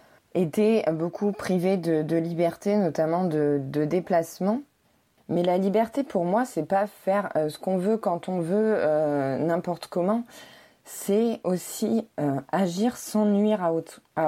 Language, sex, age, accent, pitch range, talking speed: French, female, 20-39, French, 160-205 Hz, 150 wpm